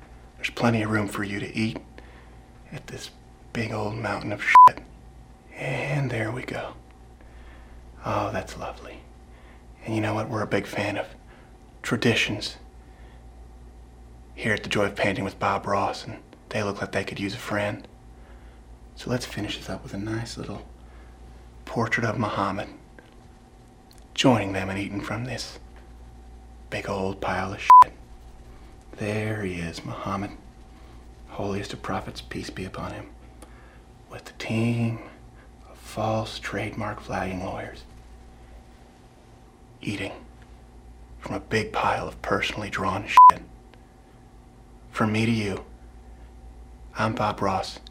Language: English